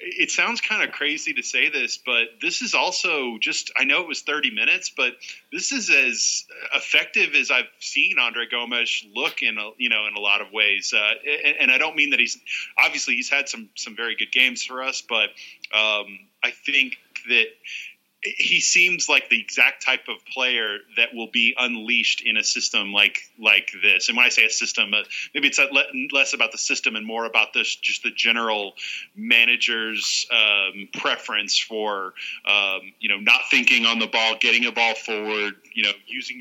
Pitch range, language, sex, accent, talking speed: 110-140 Hz, English, male, American, 190 wpm